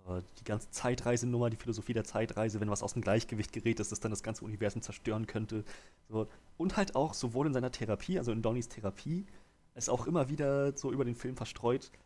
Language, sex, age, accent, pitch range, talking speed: German, male, 30-49, German, 100-125 Hz, 210 wpm